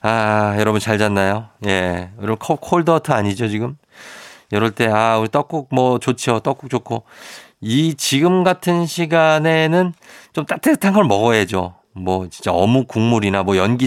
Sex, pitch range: male, 100-135 Hz